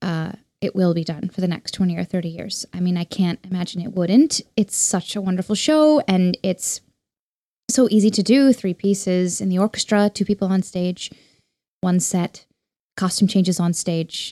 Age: 10-29